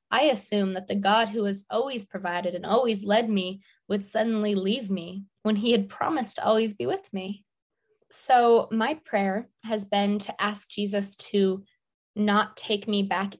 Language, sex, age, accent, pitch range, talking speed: English, female, 20-39, American, 195-215 Hz, 175 wpm